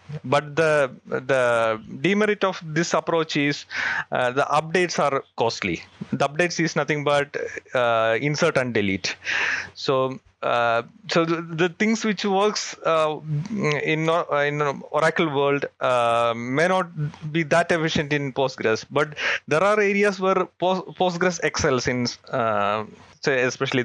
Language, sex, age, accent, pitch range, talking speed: English, male, 30-49, Indian, 125-170 Hz, 135 wpm